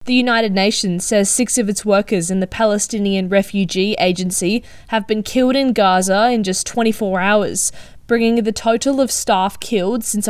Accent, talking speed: Australian, 170 wpm